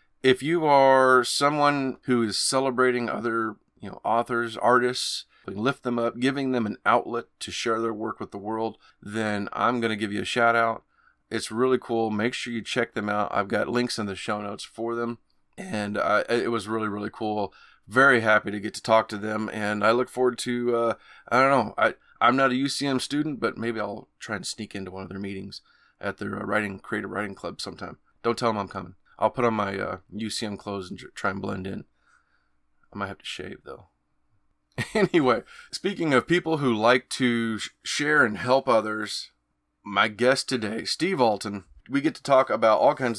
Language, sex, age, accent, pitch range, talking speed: English, male, 30-49, American, 105-125 Hz, 205 wpm